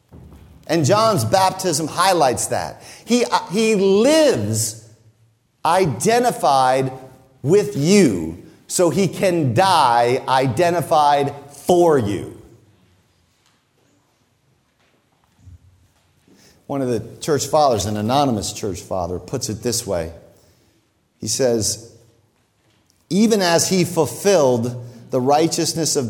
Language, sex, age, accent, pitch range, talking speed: English, male, 40-59, American, 120-190 Hz, 90 wpm